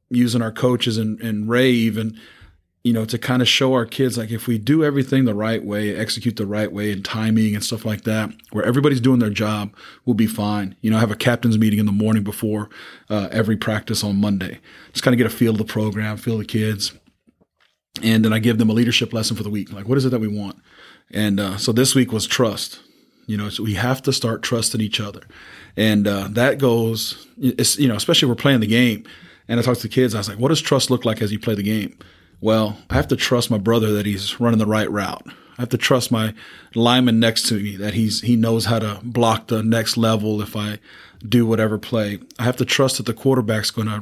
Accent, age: American, 30-49